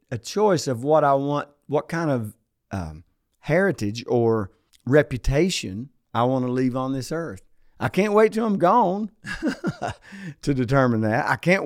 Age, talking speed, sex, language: 50-69, 160 wpm, male, English